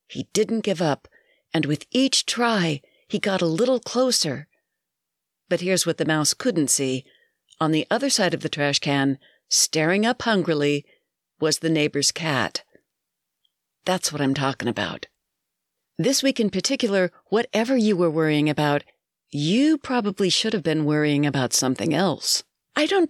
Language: English